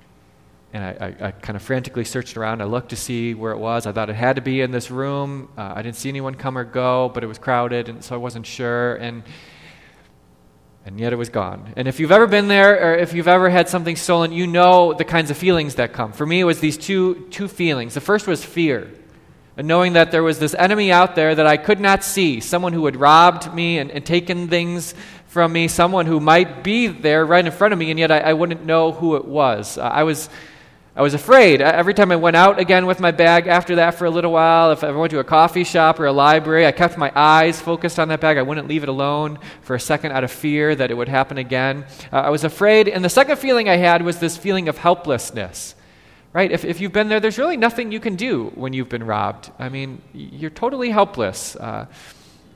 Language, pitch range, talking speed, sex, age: English, 130-175 Hz, 250 wpm, male, 20-39